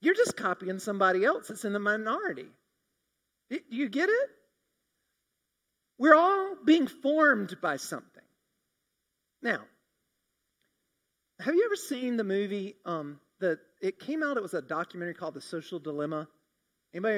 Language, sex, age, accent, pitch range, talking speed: English, male, 40-59, American, 200-305 Hz, 140 wpm